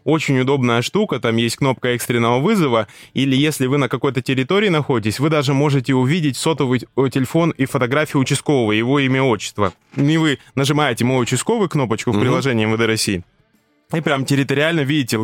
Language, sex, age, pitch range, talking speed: Russian, male, 20-39, 110-140 Hz, 160 wpm